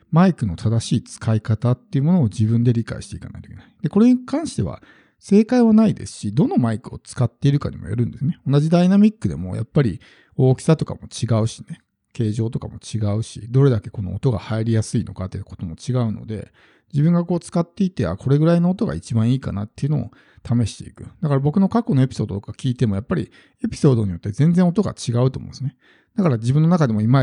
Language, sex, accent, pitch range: Japanese, male, native, 110-155 Hz